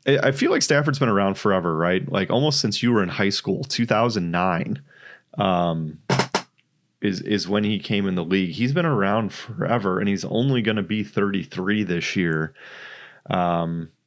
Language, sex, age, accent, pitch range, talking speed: English, male, 30-49, American, 90-110 Hz, 170 wpm